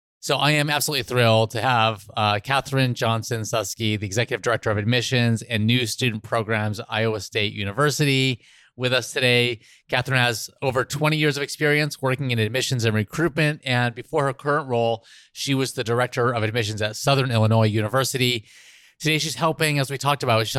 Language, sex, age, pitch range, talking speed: English, male, 30-49, 110-140 Hz, 180 wpm